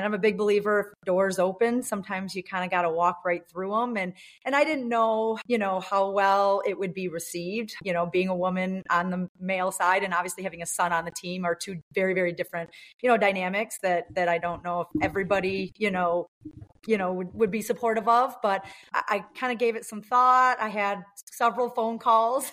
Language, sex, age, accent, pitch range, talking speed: English, female, 30-49, American, 180-220 Hz, 225 wpm